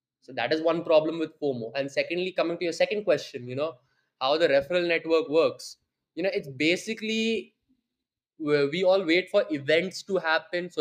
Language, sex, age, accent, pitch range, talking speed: English, male, 20-39, Indian, 145-180 Hz, 185 wpm